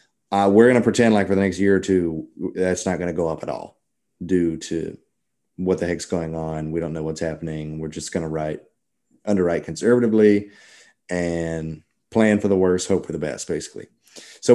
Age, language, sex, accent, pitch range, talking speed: 30-49, English, male, American, 80-95 Hz, 205 wpm